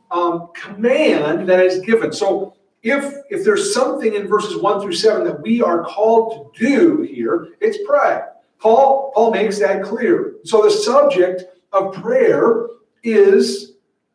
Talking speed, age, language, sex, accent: 150 wpm, 50-69, English, male, American